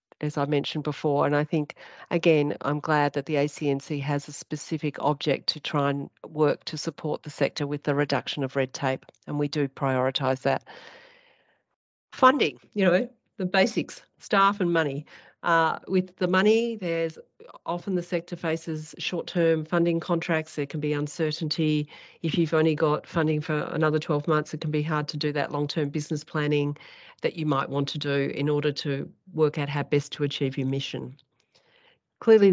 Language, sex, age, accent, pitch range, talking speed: English, female, 40-59, Australian, 145-170 Hz, 180 wpm